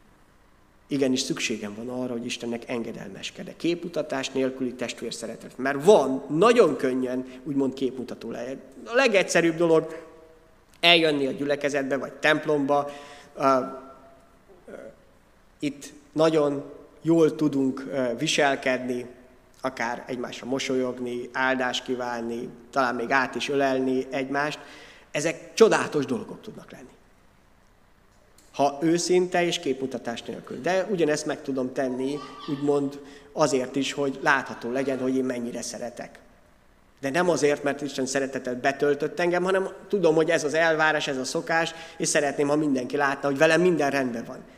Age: 30-49